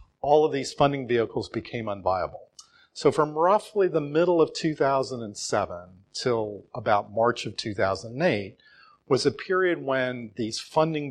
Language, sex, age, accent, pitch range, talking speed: English, male, 40-59, American, 110-145 Hz, 135 wpm